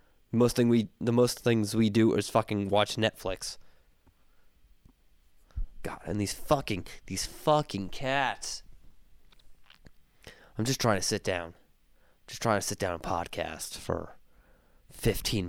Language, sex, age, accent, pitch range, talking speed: English, male, 20-39, American, 80-115 Hz, 130 wpm